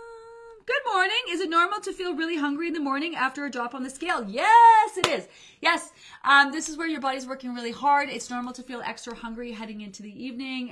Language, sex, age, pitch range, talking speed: English, female, 30-49, 195-250 Hz, 230 wpm